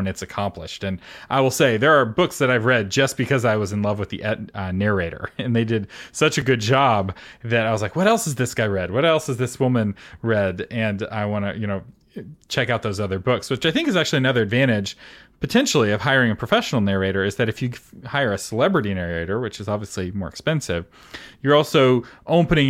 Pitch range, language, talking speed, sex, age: 105-140 Hz, English, 225 wpm, male, 30-49